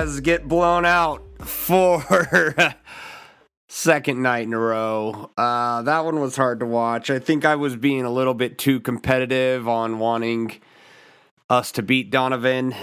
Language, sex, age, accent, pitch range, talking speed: English, male, 30-49, American, 115-145 Hz, 150 wpm